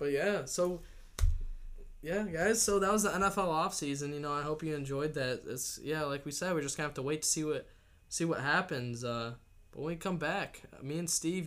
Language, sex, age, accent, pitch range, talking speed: English, male, 10-29, American, 135-165 Hz, 235 wpm